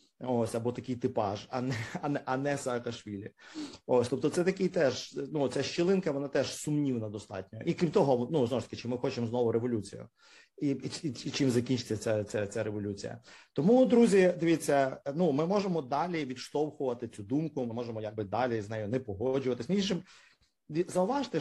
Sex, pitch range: male, 115-160 Hz